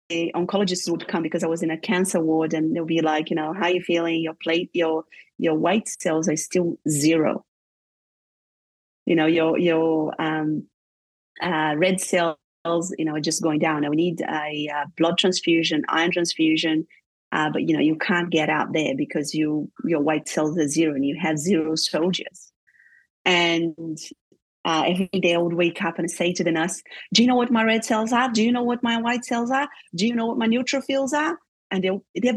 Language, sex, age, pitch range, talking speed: English, female, 30-49, 160-205 Hz, 210 wpm